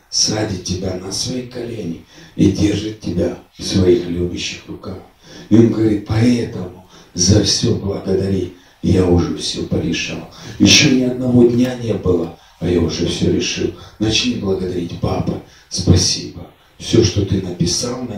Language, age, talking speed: Russian, 40-59, 140 wpm